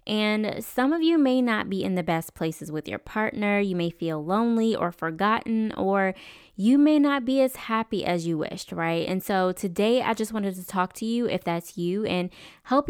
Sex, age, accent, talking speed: female, 10-29, American, 215 wpm